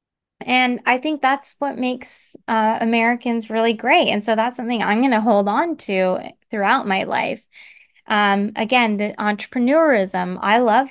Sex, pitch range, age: female, 200-235 Hz, 20-39